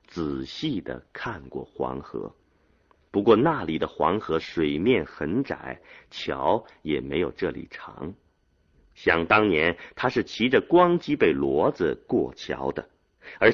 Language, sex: Chinese, male